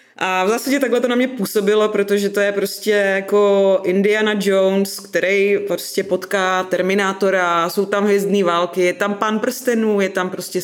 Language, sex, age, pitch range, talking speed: Czech, female, 20-39, 190-215 Hz, 170 wpm